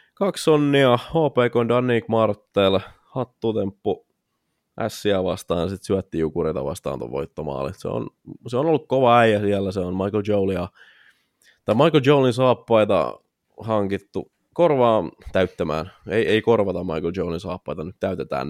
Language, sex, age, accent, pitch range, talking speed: Finnish, male, 20-39, native, 95-120 Hz, 130 wpm